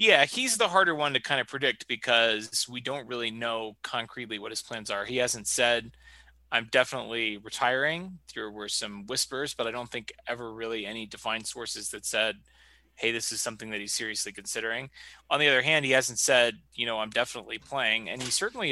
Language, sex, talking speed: English, male, 200 wpm